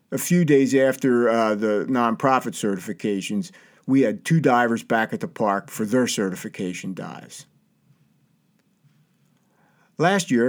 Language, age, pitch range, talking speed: English, 50-69, 110-140 Hz, 125 wpm